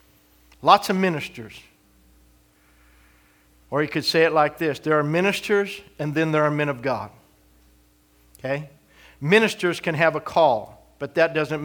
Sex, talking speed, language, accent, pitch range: male, 150 wpm, English, American, 140-180 Hz